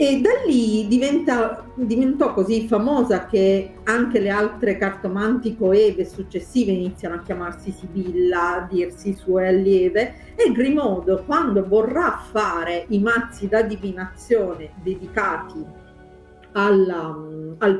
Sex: female